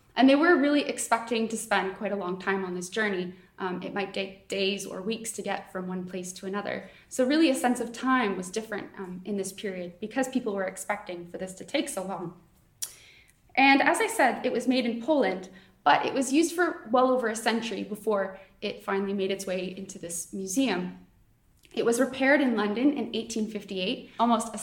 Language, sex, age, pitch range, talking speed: English, female, 20-39, 195-245 Hz, 210 wpm